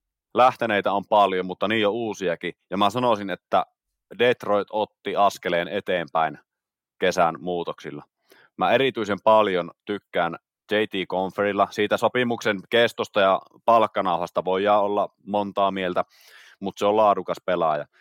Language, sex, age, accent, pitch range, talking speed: Finnish, male, 30-49, native, 95-105 Hz, 125 wpm